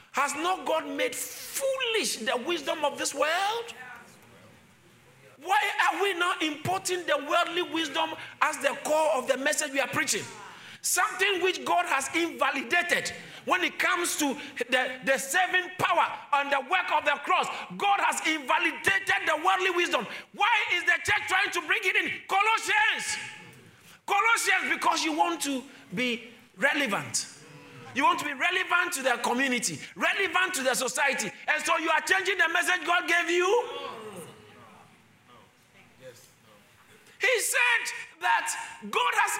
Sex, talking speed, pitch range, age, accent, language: male, 145 wpm, 265-390 Hz, 50-69, Nigerian, English